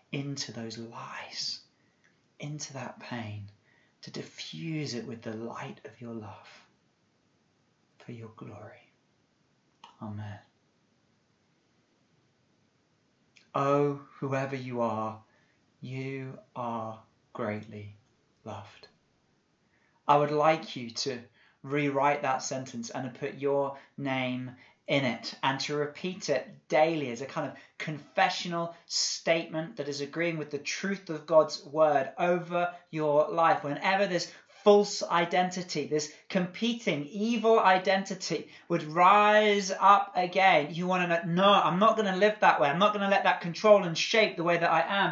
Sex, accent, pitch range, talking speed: male, British, 140-195 Hz, 135 wpm